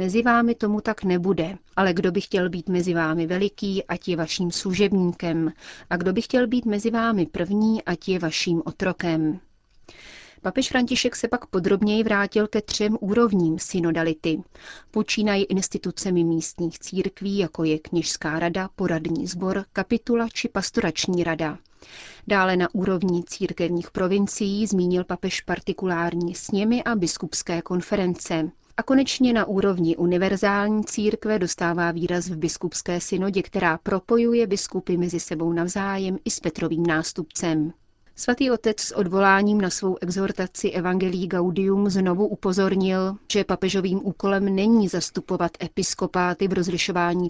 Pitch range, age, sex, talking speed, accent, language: 175-205 Hz, 30-49, female, 135 wpm, native, Czech